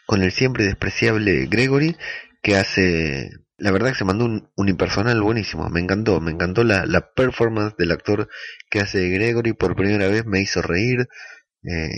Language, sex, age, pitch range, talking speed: Spanish, male, 20-39, 90-115 Hz, 175 wpm